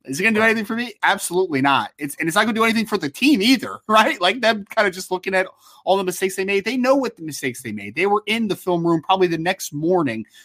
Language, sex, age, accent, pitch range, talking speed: English, male, 20-39, American, 135-180 Hz, 285 wpm